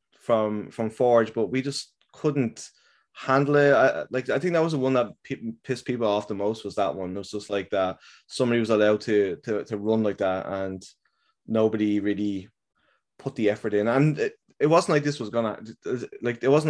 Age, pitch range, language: 20-39, 105-145 Hz, English